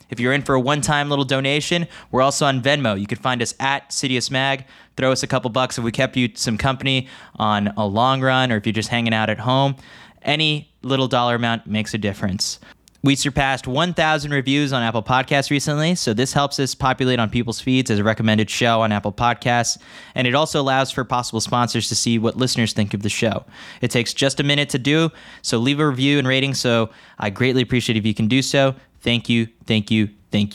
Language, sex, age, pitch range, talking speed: English, male, 20-39, 110-135 Hz, 225 wpm